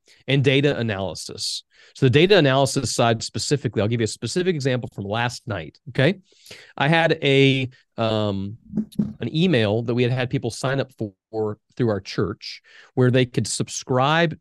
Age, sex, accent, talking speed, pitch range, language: 30-49, male, American, 165 wpm, 110-145 Hz, English